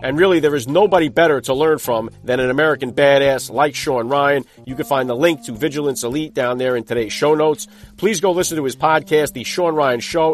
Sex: male